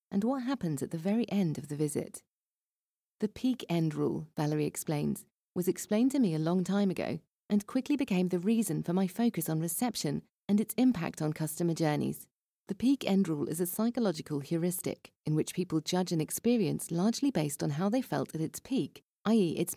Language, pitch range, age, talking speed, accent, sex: English, 160-220 Hz, 40-59, 195 wpm, British, female